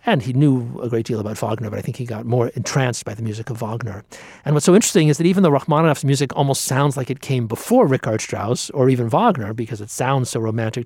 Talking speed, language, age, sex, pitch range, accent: 255 wpm, English, 50-69, male, 115-145 Hz, American